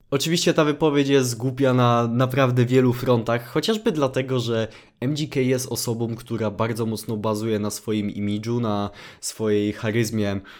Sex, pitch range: male, 110-140 Hz